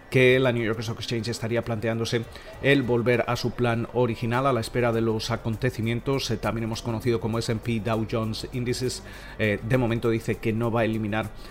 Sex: male